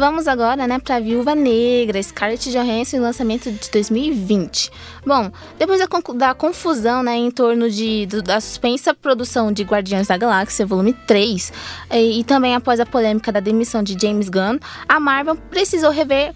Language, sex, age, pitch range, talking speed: Portuguese, female, 20-39, 225-290 Hz, 165 wpm